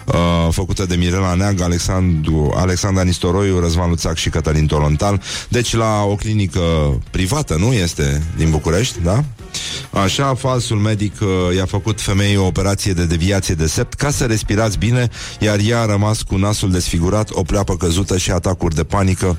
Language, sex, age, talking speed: Romanian, male, 30-49, 165 wpm